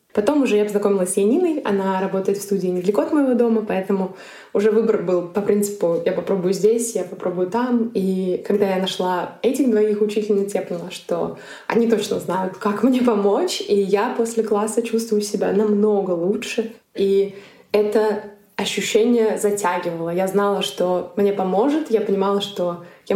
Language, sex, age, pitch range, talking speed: Russian, female, 20-39, 195-225 Hz, 165 wpm